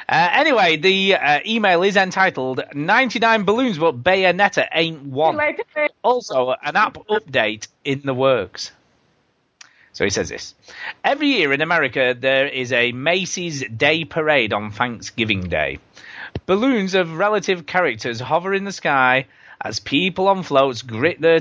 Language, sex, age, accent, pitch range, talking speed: English, male, 30-49, British, 125-195 Hz, 145 wpm